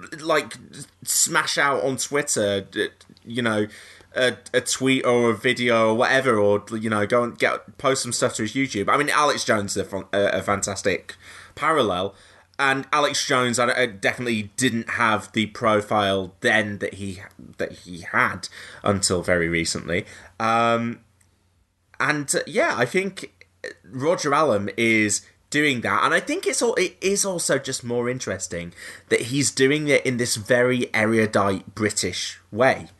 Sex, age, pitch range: male, 20-39, 100-130 Hz